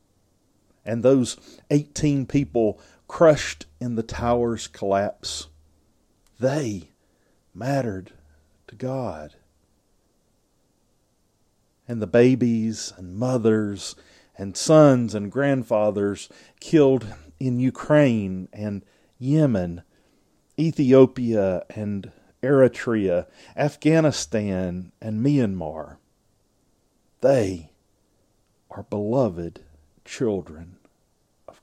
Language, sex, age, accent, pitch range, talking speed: English, male, 40-59, American, 95-135 Hz, 70 wpm